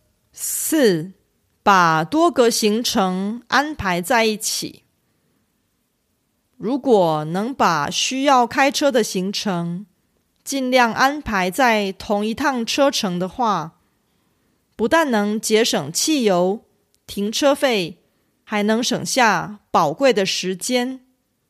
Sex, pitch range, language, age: female, 195-270 Hz, Korean, 30-49